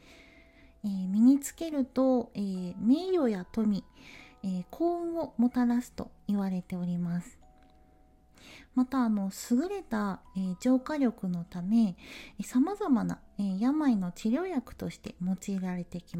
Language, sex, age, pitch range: Japanese, female, 40-59, 175-245 Hz